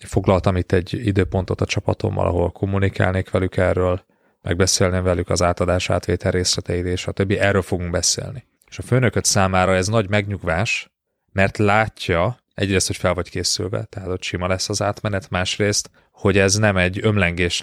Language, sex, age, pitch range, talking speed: Hungarian, male, 30-49, 90-105 Hz, 165 wpm